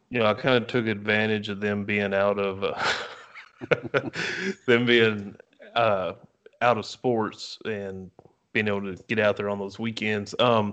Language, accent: English, American